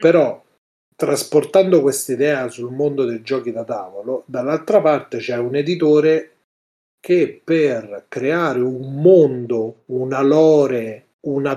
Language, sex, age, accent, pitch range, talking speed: Italian, male, 40-59, native, 125-155 Hz, 120 wpm